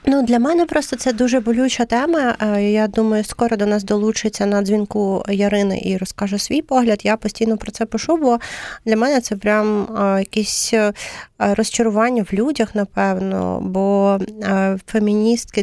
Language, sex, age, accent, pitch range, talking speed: Ukrainian, female, 30-49, native, 185-210 Hz, 145 wpm